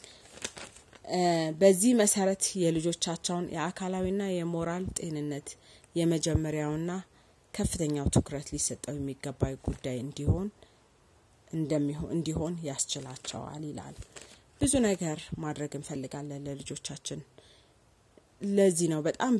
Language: Amharic